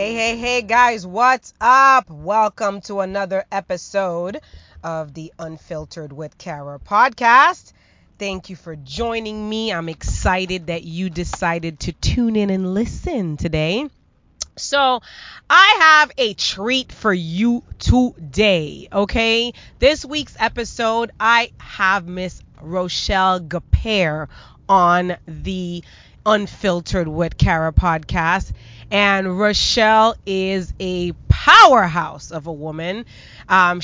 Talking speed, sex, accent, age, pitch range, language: 115 wpm, female, American, 30-49, 175-225 Hz, English